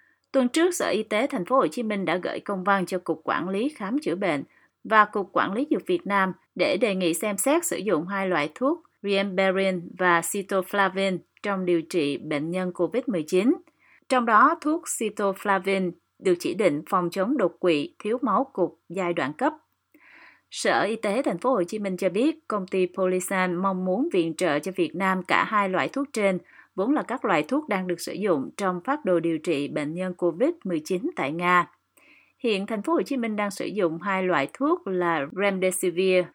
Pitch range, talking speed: 175-245 Hz, 200 wpm